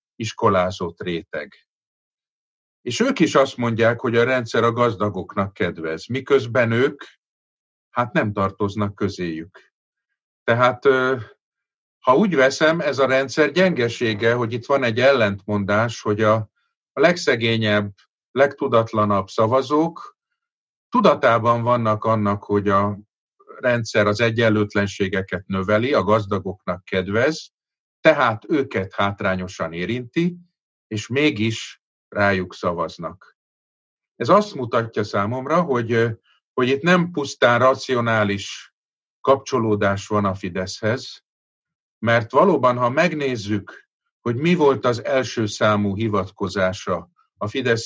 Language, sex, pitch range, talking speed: Hungarian, male, 100-130 Hz, 105 wpm